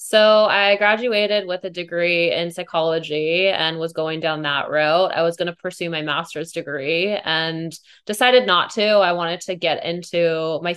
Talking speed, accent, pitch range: 180 wpm, American, 165-195 Hz